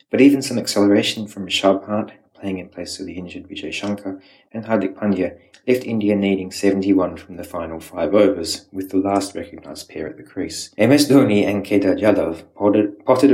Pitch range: 95-105 Hz